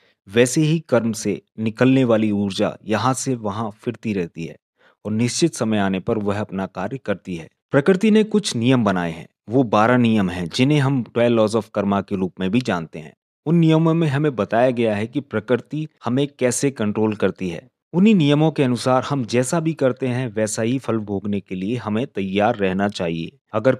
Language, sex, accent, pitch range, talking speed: Hindi, male, native, 105-140 Hz, 200 wpm